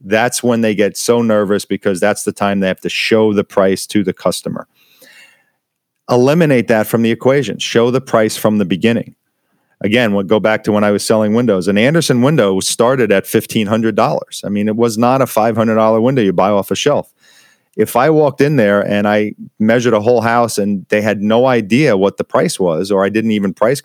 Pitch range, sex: 105-125 Hz, male